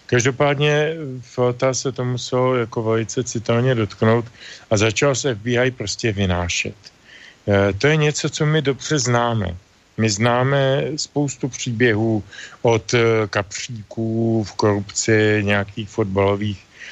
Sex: male